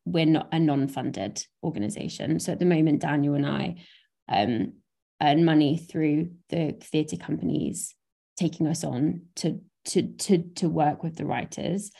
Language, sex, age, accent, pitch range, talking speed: English, female, 20-39, British, 155-190 Hz, 140 wpm